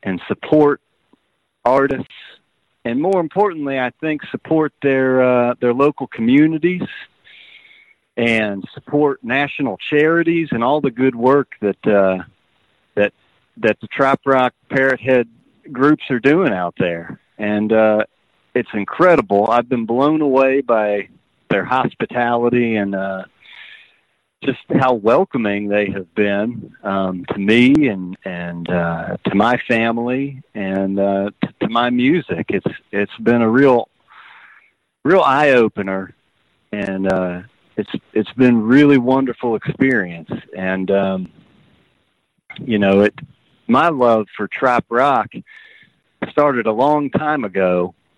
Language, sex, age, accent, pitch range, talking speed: English, male, 40-59, American, 100-140 Hz, 125 wpm